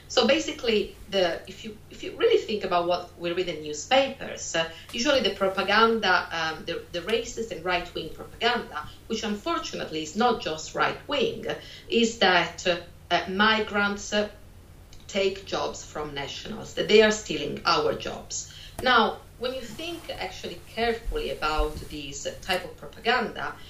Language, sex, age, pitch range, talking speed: English, female, 40-59, 170-235 Hz, 150 wpm